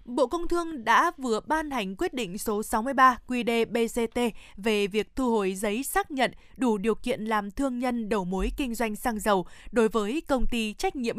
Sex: female